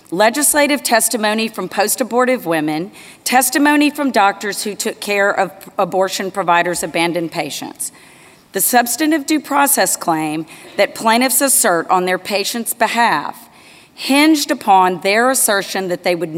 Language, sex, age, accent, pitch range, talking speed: English, female, 40-59, American, 180-235 Hz, 130 wpm